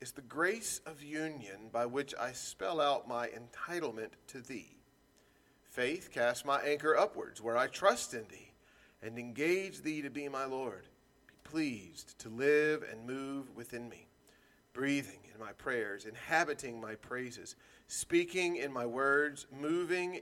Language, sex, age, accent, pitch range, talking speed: English, male, 40-59, American, 120-155 Hz, 150 wpm